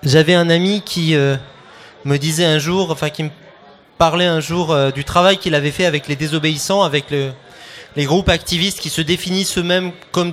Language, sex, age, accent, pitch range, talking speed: French, male, 30-49, French, 145-185 Hz, 200 wpm